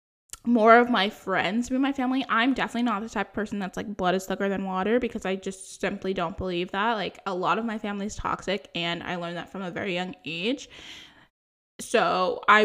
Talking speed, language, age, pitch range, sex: 225 wpm, English, 10-29, 190-245 Hz, female